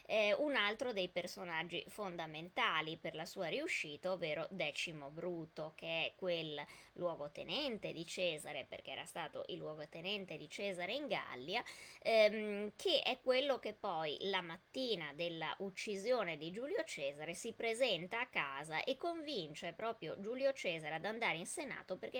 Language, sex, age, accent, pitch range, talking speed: Italian, female, 20-39, native, 160-220 Hz, 150 wpm